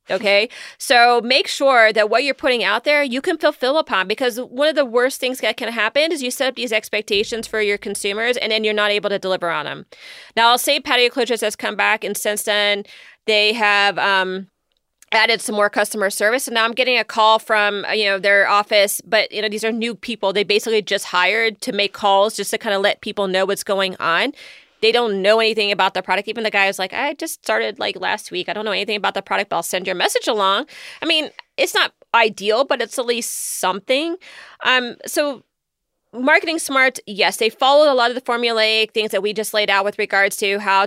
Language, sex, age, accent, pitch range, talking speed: English, female, 30-49, American, 200-245 Hz, 230 wpm